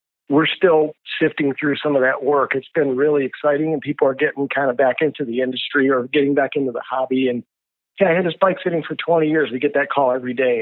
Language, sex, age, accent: English, male, 50-69, American